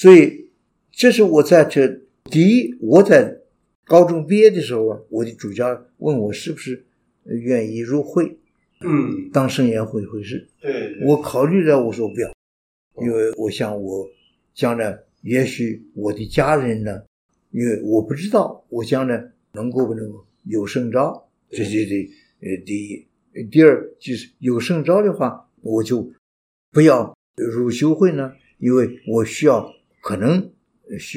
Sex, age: male, 60-79